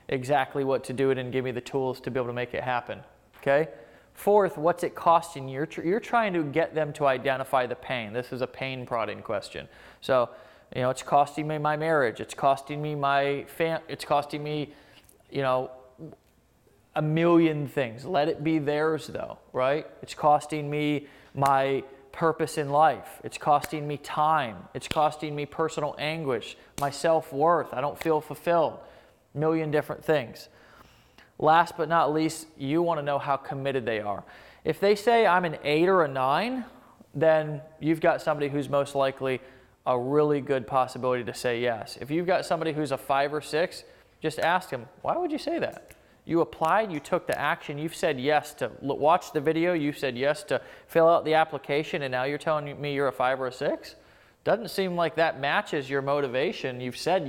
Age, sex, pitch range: 20-39, male, 135-160 Hz